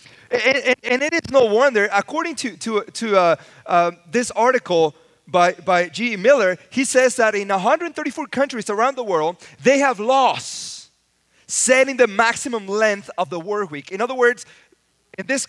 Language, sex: English, male